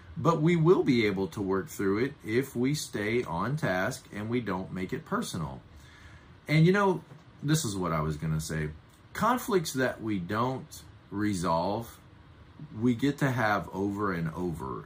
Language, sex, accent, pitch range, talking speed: English, male, American, 90-125 Hz, 175 wpm